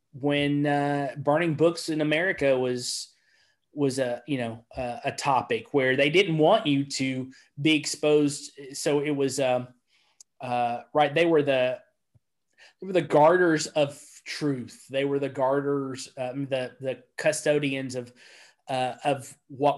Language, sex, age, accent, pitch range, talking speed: English, male, 30-49, American, 130-155 Hz, 150 wpm